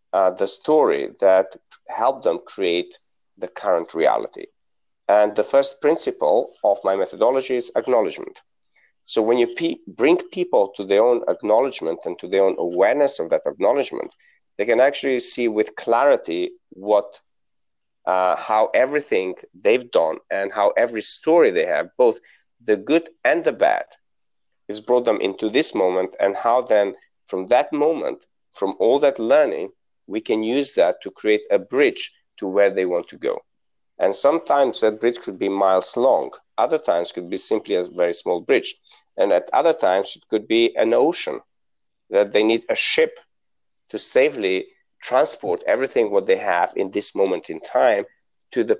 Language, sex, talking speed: English, male, 165 wpm